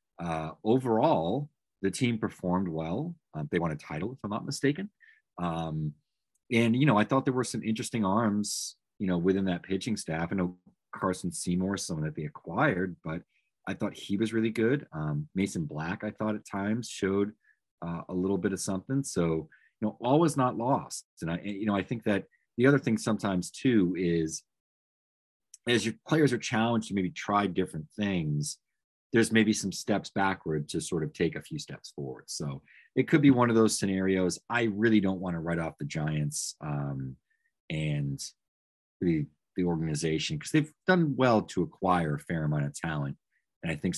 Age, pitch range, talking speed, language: 30-49, 80-115 Hz, 190 wpm, English